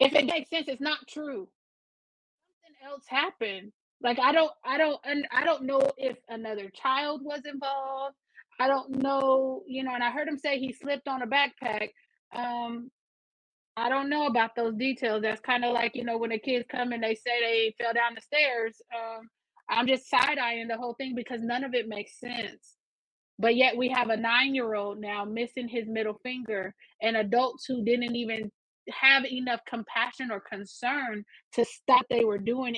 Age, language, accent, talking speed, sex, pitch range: 20-39, English, American, 195 wpm, female, 225-275 Hz